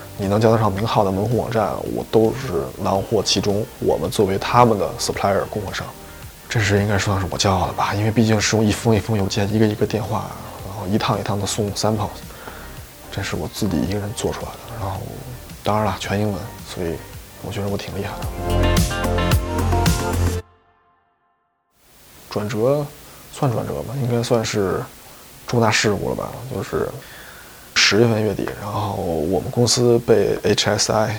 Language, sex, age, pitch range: English, male, 20-39, 100-120 Hz